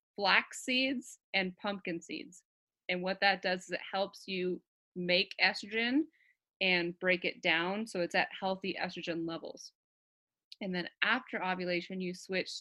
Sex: female